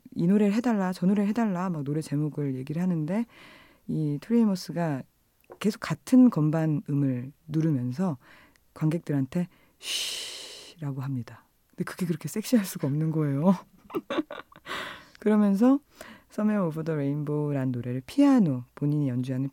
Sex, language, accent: female, Korean, native